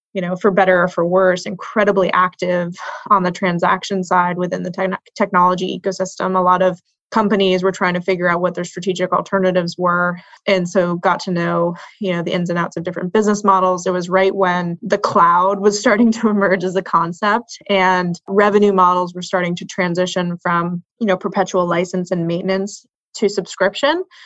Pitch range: 175-200 Hz